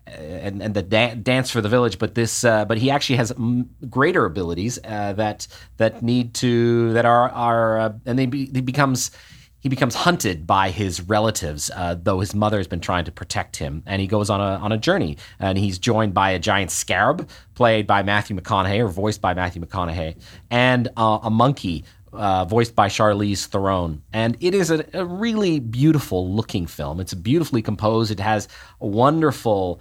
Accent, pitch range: American, 95-120 Hz